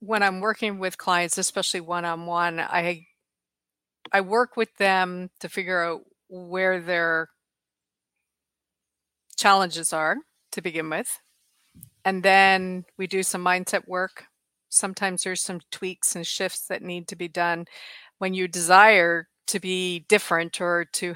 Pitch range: 175-200 Hz